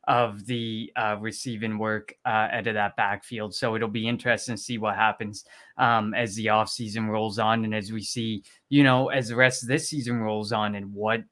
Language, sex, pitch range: English, male, 115-135 Hz